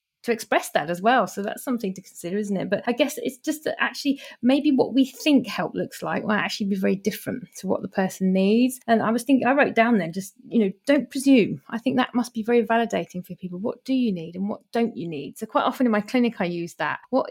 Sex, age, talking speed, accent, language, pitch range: female, 30-49, 265 wpm, British, English, 205-245 Hz